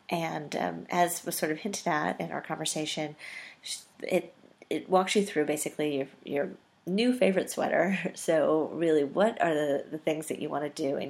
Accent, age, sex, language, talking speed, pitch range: American, 30-49, female, English, 190 wpm, 155-210 Hz